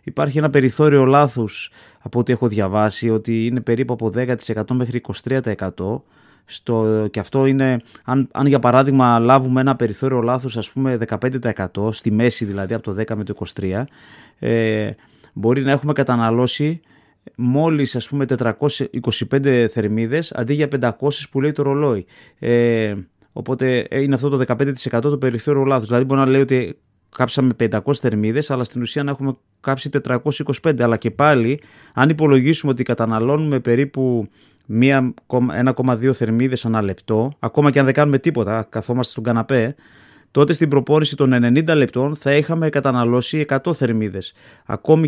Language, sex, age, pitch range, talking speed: Greek, male, 20-39, 115-140 Hz, 150 wpm